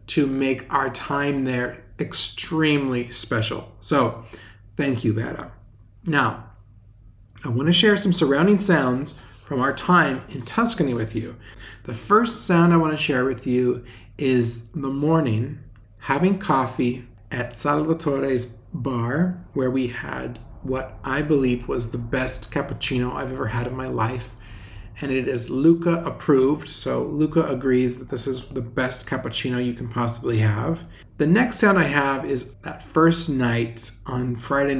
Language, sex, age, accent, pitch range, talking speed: English, male, 30-49, American, 115-145 Hz, 150 wpm